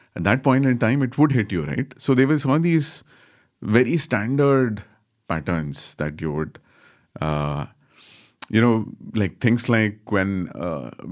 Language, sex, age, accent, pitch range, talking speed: English, male, 30-49, Indian, 85-120 Hz, 160 wpm